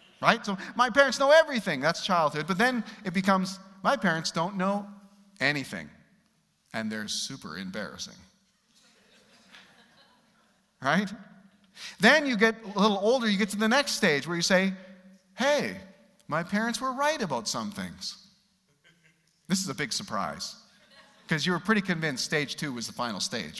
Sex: male